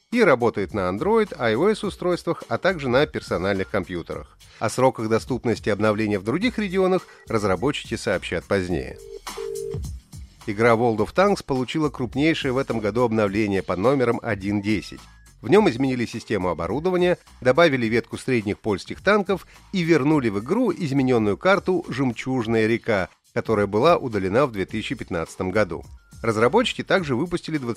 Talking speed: 130 wpm